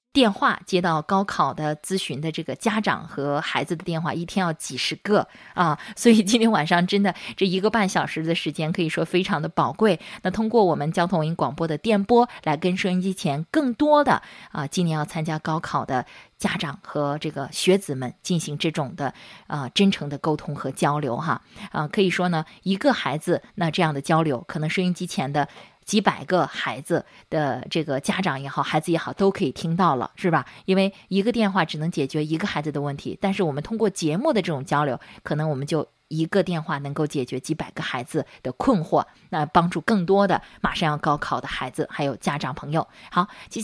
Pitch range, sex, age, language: 155-195 Hz, female, 20-39, Chinese